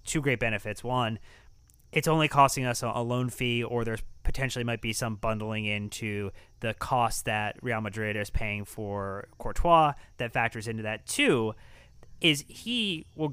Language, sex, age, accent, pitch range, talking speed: English, male, 20-39, American, 110-140 Hz, 160 wpm